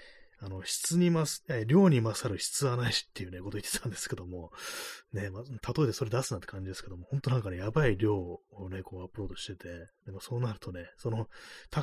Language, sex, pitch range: Japanese, male, 95-140 Hz